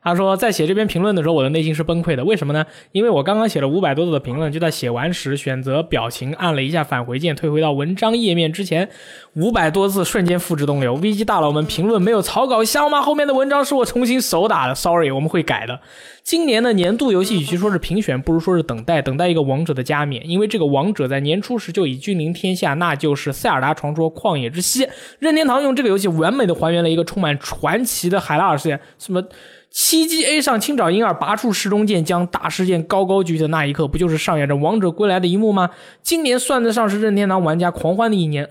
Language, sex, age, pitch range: Chinese, male, 20-39, 160-215 Hz